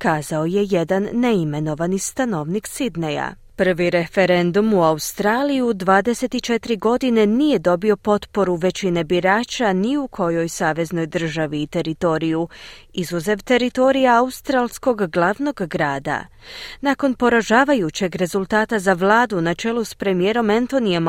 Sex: female